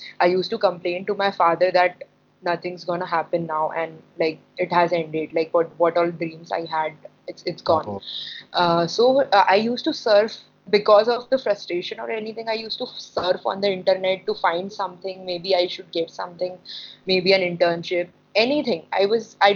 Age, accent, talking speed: 20-39, Indian, 195 wpm